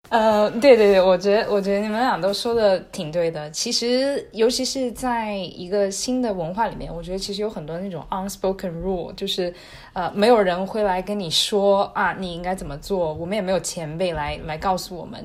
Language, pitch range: Chinese, 175-215 Hz